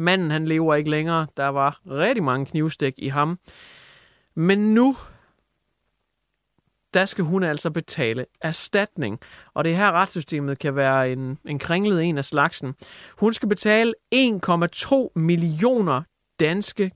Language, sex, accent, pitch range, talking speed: English, male, Danish, 145-190 Hz, 140 wpm